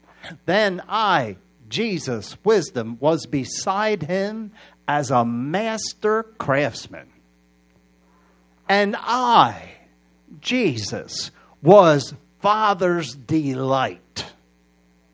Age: 50-69